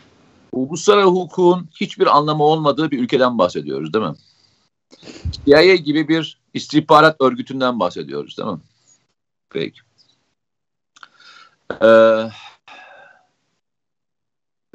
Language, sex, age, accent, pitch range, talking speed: Turkish, male, 50-69, native, 110-160 Hz, 80 wpm